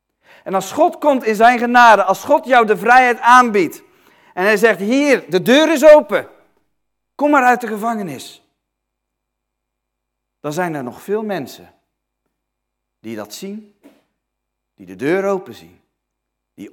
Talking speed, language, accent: 145 wpm, Dutch, Dutch